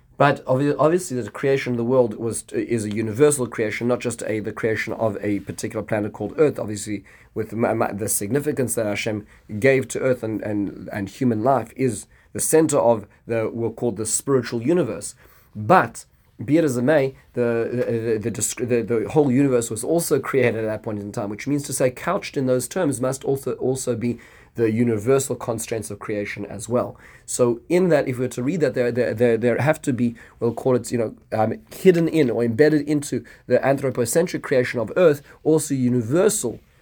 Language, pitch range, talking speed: English, 115-130 Hz, 200 wpm